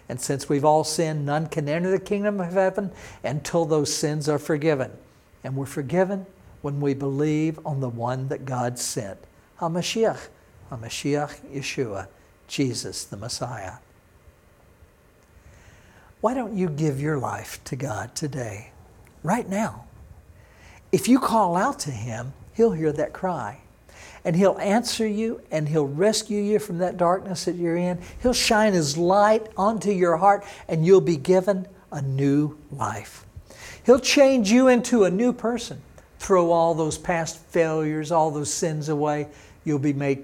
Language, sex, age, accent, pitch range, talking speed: English, male, 60-79, American, 130-190 Hz, 155 wpm